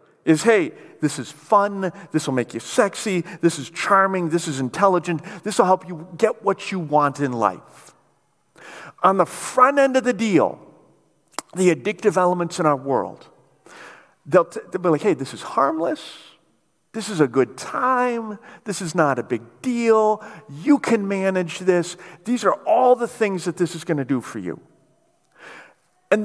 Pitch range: 165-240 Hz